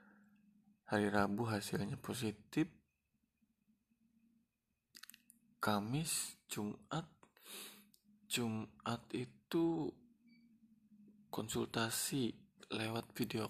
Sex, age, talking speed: male, 20-39, 50 wpm